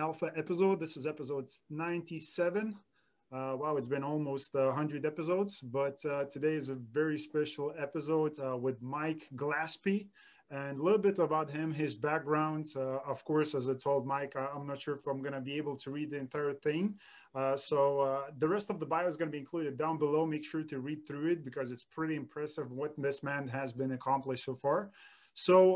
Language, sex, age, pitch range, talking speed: English, male, 20-39, 135-160 Hz, 205 wpm